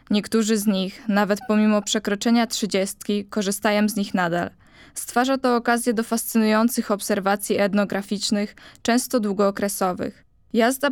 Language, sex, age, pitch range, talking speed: Polish, female, 20-39, 200-230 Hz, 115 wpm